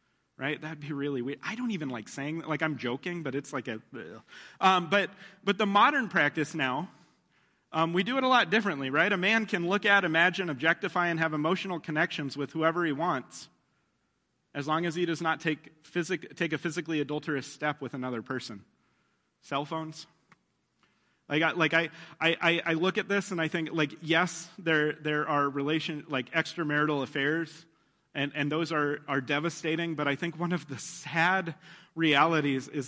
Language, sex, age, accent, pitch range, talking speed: English, male, 30-49, American, 145-175 Hz, 190 wpm